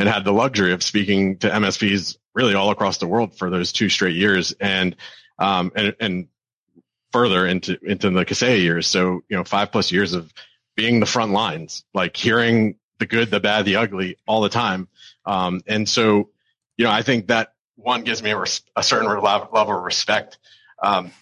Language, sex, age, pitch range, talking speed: English, male, 40-59, 100-120 Hz, 195 wpm